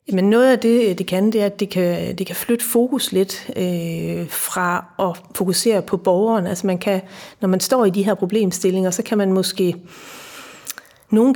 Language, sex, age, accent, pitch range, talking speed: Danish, female, 40-59, native, 180-210 Hz, 165 wpm